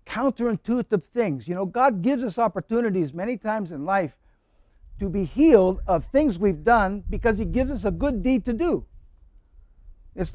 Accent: American